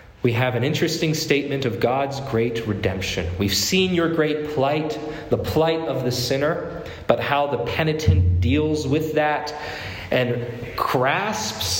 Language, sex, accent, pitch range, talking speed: English, male, American, 115-160 Hz, 140 wpm